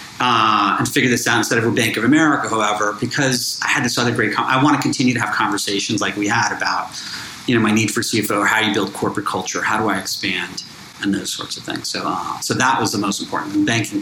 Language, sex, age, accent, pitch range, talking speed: English, male, 40-59, American, 100-125 Hz, 250 wpm